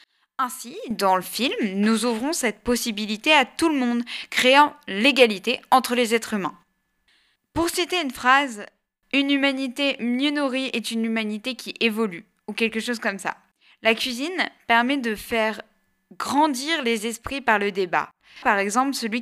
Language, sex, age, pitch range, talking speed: French, female, 20-39, 215-275 Hz, 155 wpm